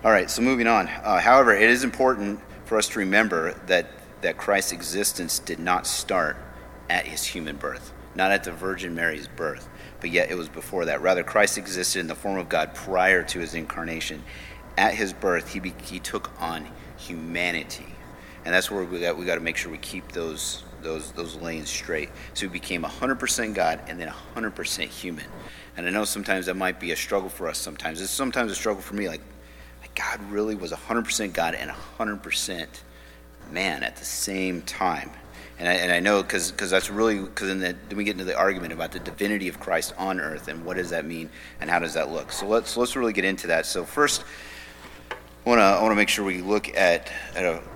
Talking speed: 210 wpm